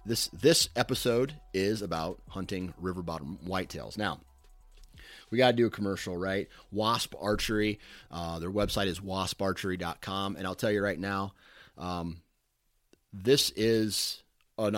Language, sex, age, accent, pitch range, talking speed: English, male, 30-49, American, 90-110 Hz, 140 wpm